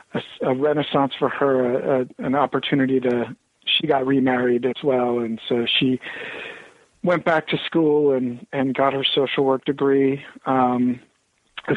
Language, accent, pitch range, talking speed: English, American, 125-145 Hz, 160 wpm